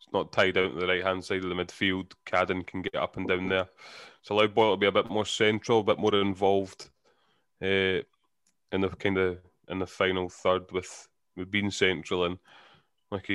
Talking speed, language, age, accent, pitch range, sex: 210 wpm, English, 20-39, British, 90-105 Hz, male